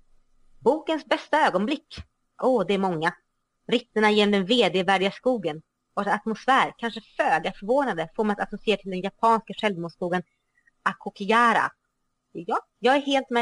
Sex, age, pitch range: female, 30-49, 180-235 Hz